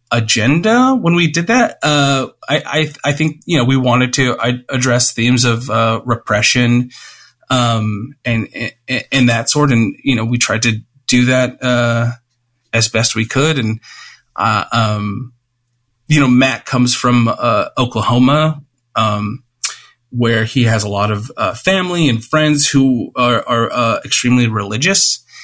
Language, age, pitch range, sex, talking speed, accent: English, 30-49, 120-145 Hz, male, 155 wpm, American